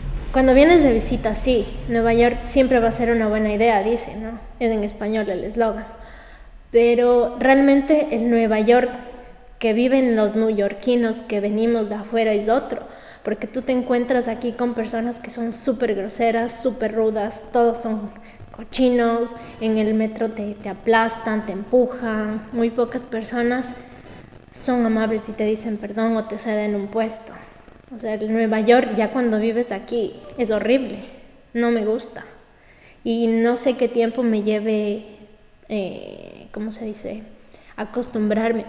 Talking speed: 155 wpm